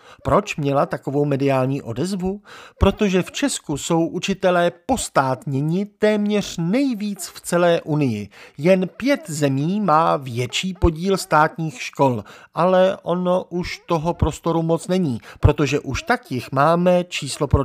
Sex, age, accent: male, 50-69, native